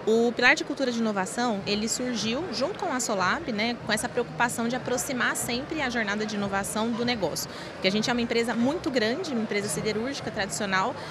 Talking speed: 200 wpm